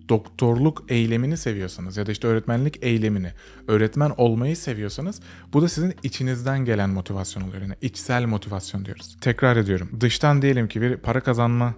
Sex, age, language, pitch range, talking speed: male, 30-49, Turkish, 105-135 Hz, 155 wpm